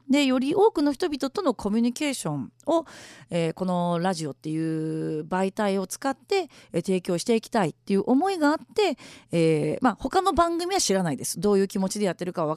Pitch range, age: 175-280 Hz, 40-59